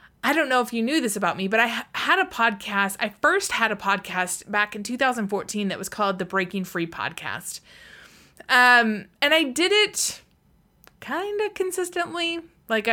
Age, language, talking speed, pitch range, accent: 20-39, English, 175 wpm, 195-280 Hz, American